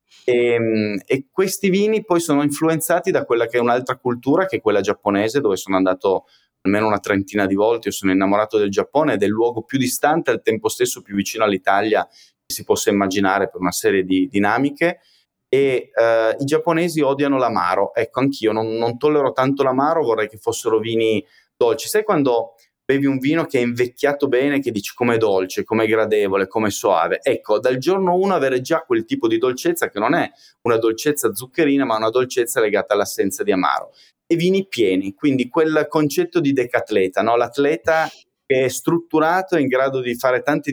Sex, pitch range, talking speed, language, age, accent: male, 115-165 Hz, 190 wpm, Italian, 20-39, native